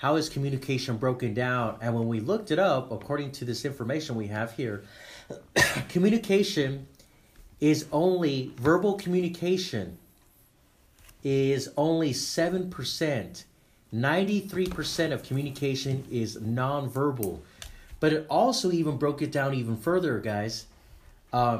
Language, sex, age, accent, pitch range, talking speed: English, male, 30-49, American, 120-180 Hz, 125 wpm